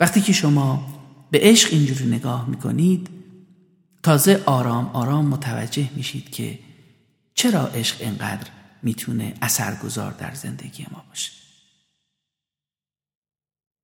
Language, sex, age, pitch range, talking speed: Persian, male, 50-69, 130-180 Hz, 100 wpm